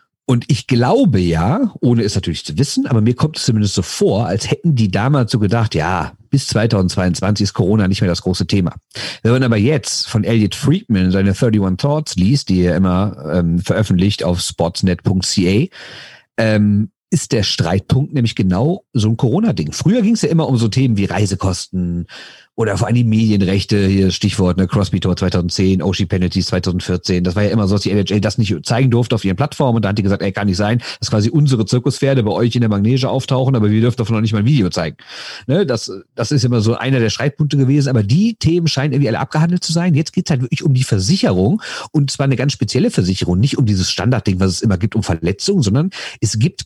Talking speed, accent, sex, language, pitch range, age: 220 wpm, German, male, German, 95-135 Hz, 50-69